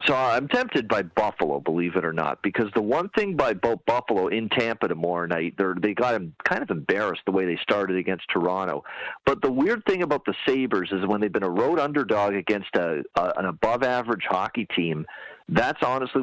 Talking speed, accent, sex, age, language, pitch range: 210 wpm, American, male, 40-59, English, 95-135 Hz